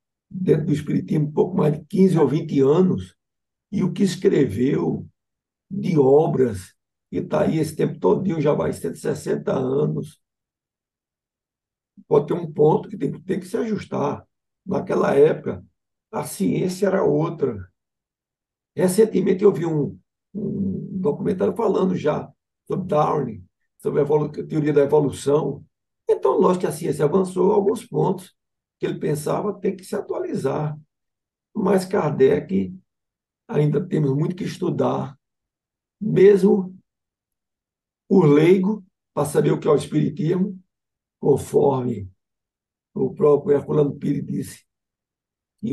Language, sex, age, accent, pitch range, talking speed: Portuguese, male, 60-79, Brazilian, 150-200 Hz, 135 wpm